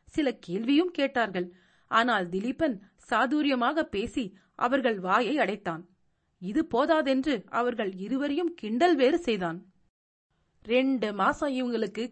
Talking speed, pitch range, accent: 100 wpm, 195-280 Hz, native